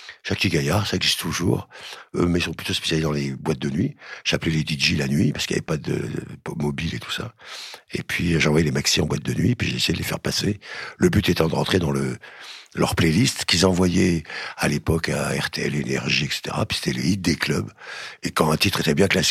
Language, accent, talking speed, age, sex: French, French, 240 wpm, 60-79, male